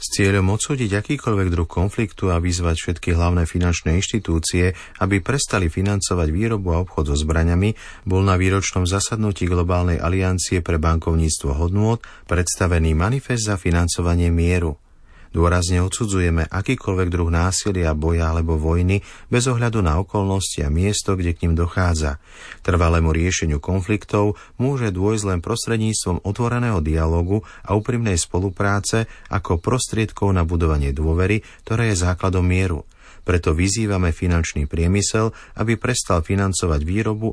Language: Slovak